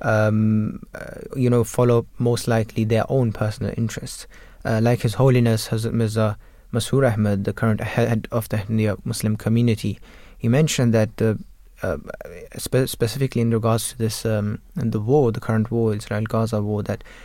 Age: 20-39